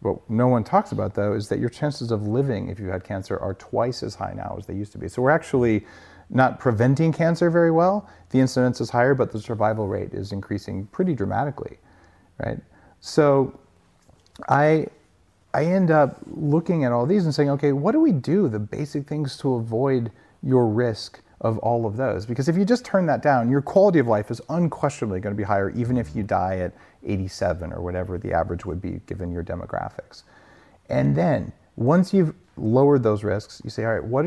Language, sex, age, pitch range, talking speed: English, male, 40-59, 105-140 Hz, 205 wpm